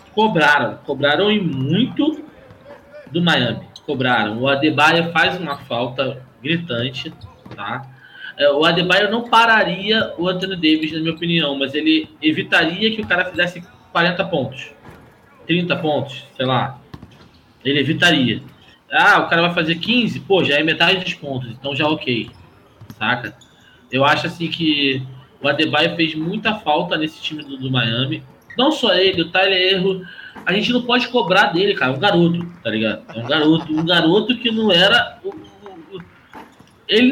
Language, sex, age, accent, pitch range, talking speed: Portuguese, male, 20-39, Brazilian, 155-235 Hz, 165 wpm